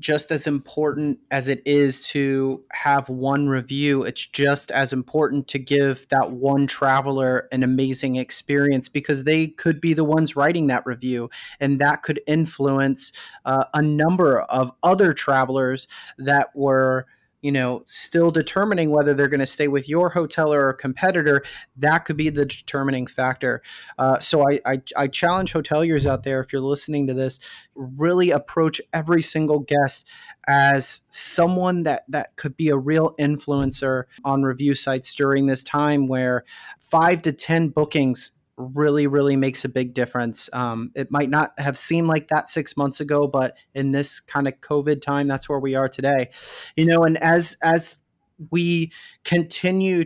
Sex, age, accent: male, 30-49, American